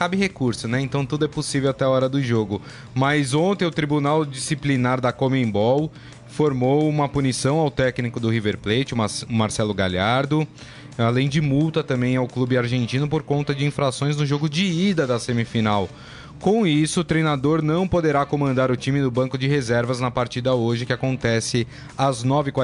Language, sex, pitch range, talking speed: Portuguese, male, 120-145 Hz, 175 wpm